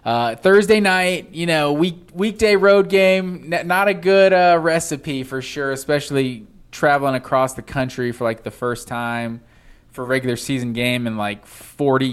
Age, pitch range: 20-39, 130-190 Hz